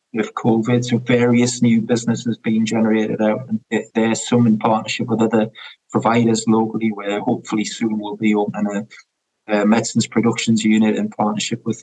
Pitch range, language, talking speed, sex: 105-115 Hz, English, 160 wpm, male